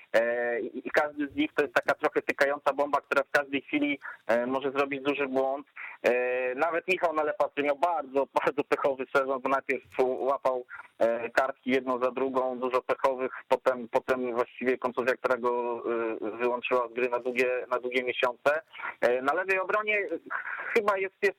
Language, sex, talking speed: Polish, male, 155 wpm